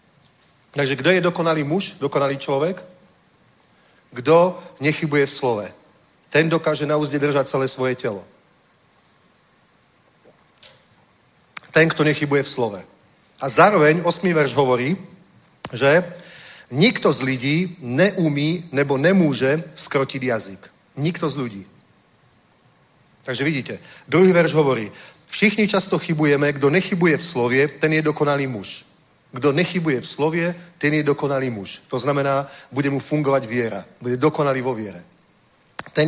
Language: Czech